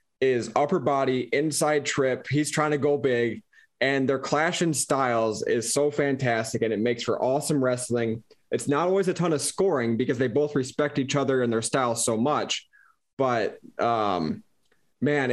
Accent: American